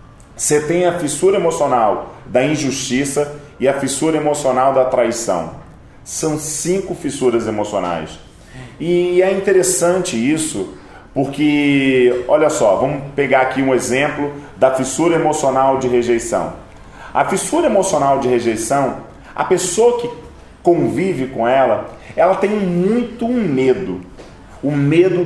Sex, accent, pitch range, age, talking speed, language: male, Brazilian, 125-170 Hz, 40-59, 120 wpm, Portuguese